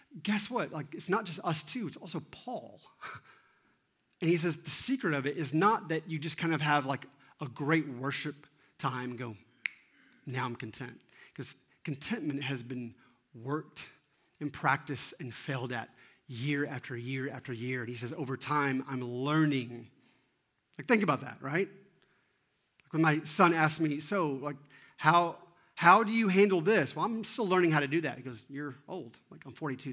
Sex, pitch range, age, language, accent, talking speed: male, 130-160 Hz, 30-49, English, American, 185 wpm